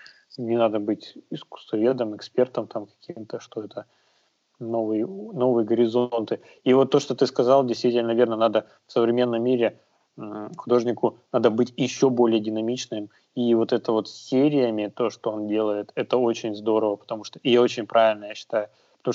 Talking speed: 155 wpm